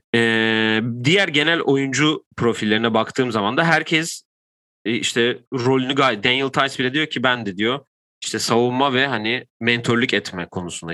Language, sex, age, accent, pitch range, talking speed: Turkish, male, 30-49, native, 100-130 Hz, 145 wpm